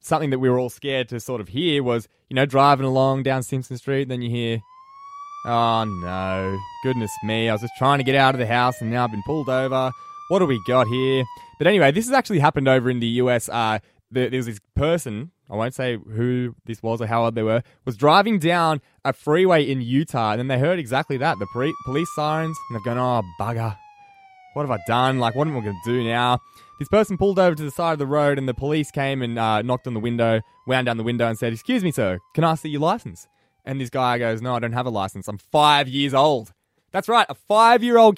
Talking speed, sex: 255 wpm, male